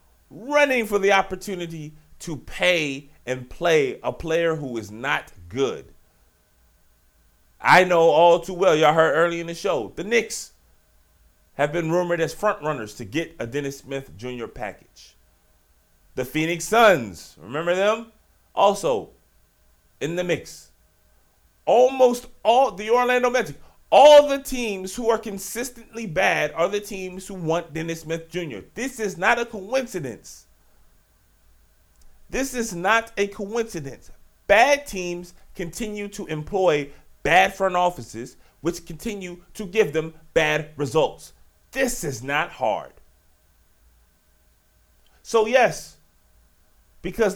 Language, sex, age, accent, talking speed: English, male, 30-49, American, 130 wpm